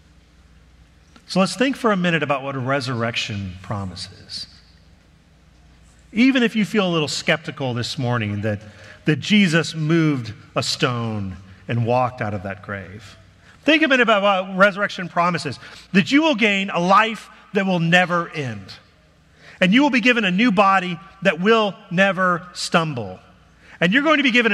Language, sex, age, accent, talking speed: English, male, 40-59, American, 165 wpm